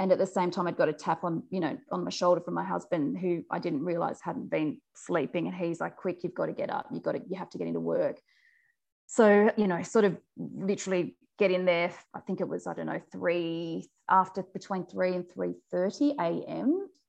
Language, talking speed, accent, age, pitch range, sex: English, 230 wpm, Australian, 20-39, 175-200 Hz, female